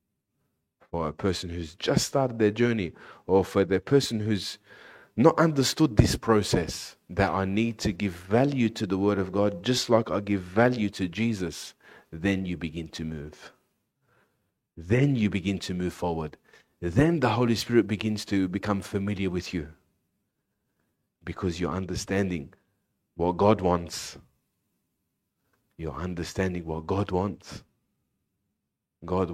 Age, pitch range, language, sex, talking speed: 30-49, 90-120 Hz, English, male, 135 wpm